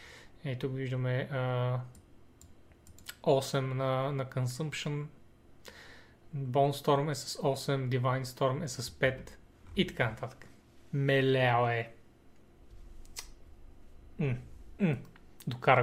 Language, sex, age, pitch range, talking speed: Bulgarian, male, 30-49, 130-155 Hz, 85 wpm